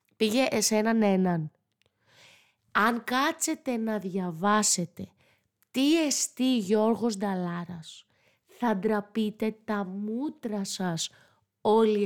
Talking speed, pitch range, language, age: 85 wpm, 190-235 Hz, Greek, 20-39